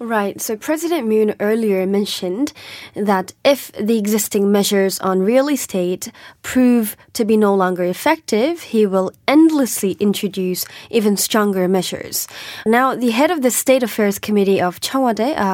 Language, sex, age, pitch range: Korean, female, 20-39, 190-230 Hz